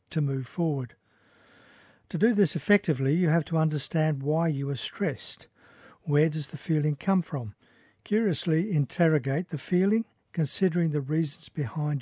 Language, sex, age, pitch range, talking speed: English, male, 60-79, 140-170 Hz, 145 wpm